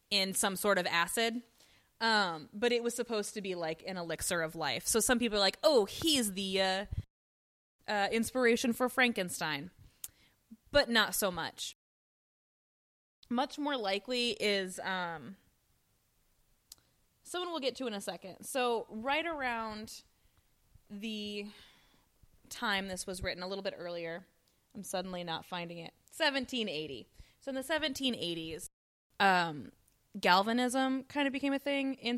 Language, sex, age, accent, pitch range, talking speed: English, female, 20-39, American, 180-245 Hz, 140 wpm